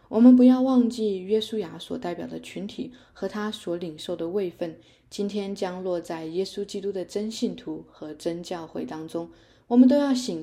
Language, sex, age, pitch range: Chinese, female, 20-39, 165-220 Hz